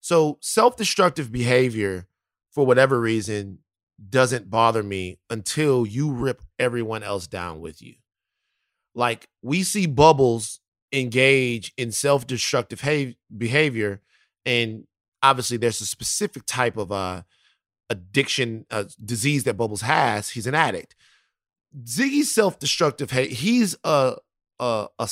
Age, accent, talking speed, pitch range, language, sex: 30-49, American, 120 wpm, 120-185 Hz, English, male